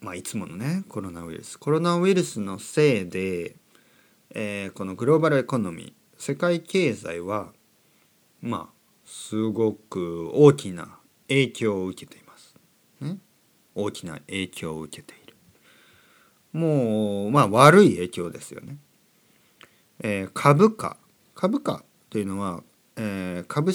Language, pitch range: Japanese, 100-155 Hz